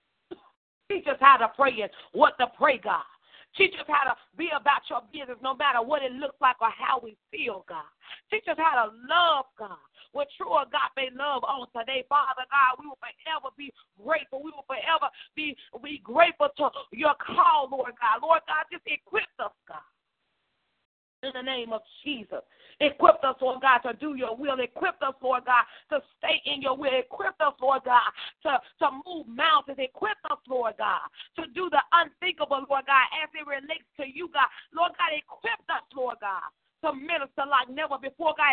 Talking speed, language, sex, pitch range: 195 wpm, English, female, 260-320 Hz